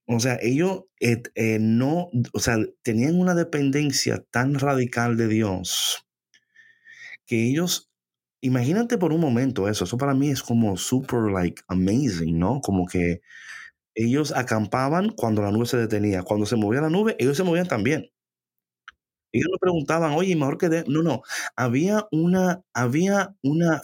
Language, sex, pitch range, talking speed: Spanish, male, 100-150 Hz, 155 wpm